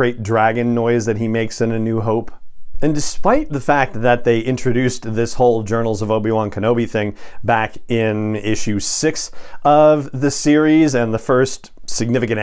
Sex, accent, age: male, American, 40-59